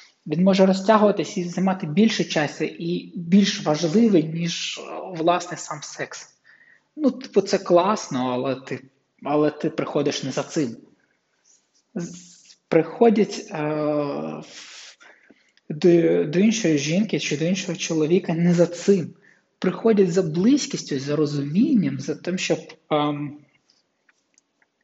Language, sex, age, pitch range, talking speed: Ukrainian, male, 20-39, 155-195 Hz, 115 wpm